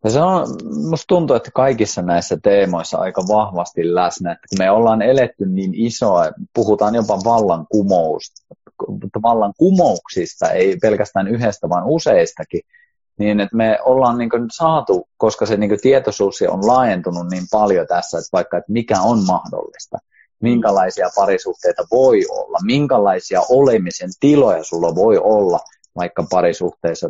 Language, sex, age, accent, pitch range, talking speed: Finnish, male, 30-49, native, 95-150 Hz, 125 wpm